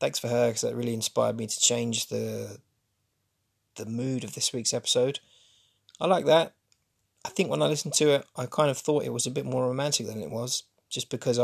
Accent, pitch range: British, 110-140 Hz